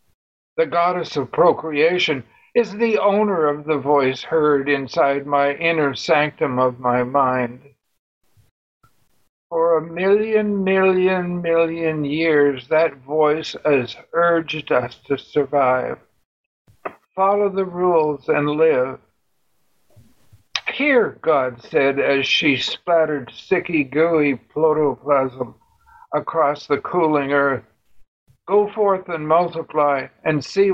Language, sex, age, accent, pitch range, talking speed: English, male, 60-79, American, 140-170 Hz, 105 wpm